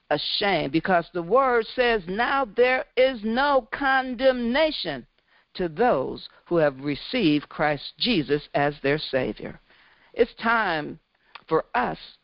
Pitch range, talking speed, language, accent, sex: 145-235 Hz, 120 wpm, English, American, female